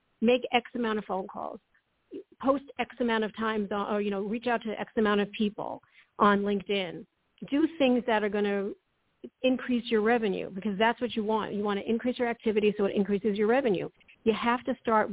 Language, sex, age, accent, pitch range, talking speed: English, female, 50-69, American, 205-240 Hz, 205 wpm